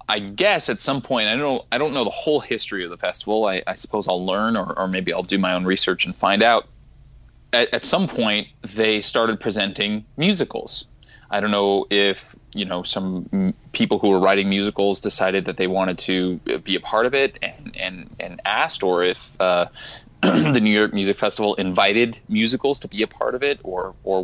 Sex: male